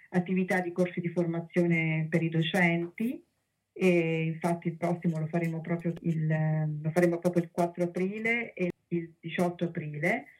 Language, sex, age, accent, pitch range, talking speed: Italian, female, 40-59, native, 170-190 Hz, 135 wpm